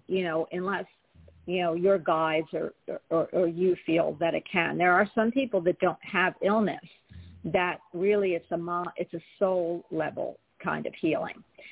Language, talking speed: English, 175 wpm